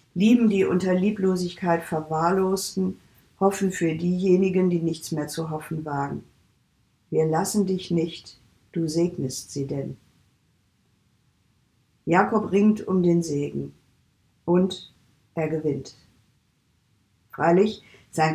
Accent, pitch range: German, 150-190 Hz